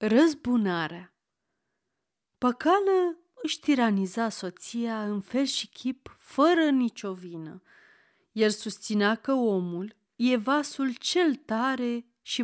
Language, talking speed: Romanian, 100 wpm